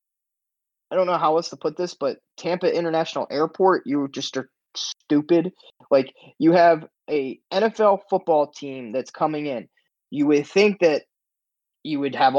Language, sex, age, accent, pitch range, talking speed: English, male, 20-39, American, 145-185 Hz, 160 wpm